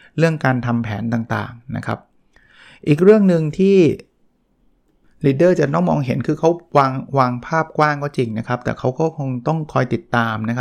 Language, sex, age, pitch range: Thai, male, 20-39, 115-145 Hz